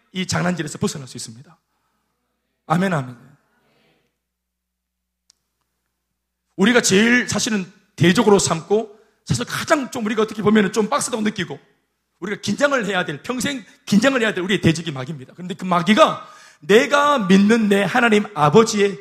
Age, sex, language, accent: 40-59, male, Korean, native